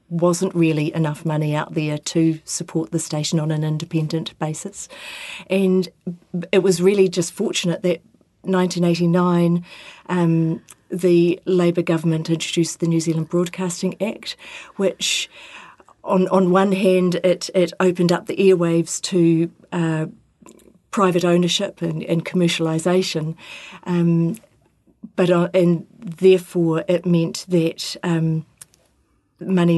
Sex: female